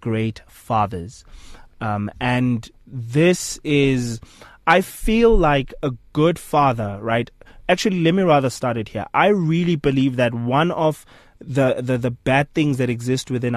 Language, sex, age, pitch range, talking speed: English, male, 20-39, 125-165 Hz, 150 wpm